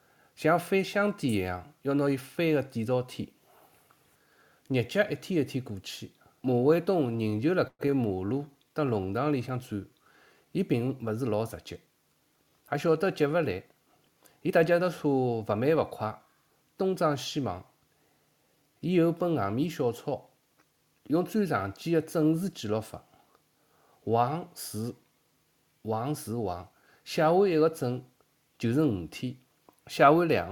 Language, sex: Chinese, male